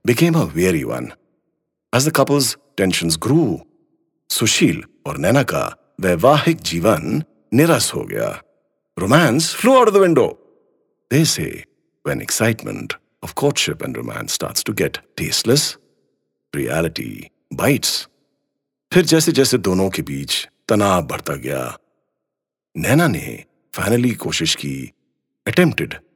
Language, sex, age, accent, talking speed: English, male, 50-69, Indian, 120 wpm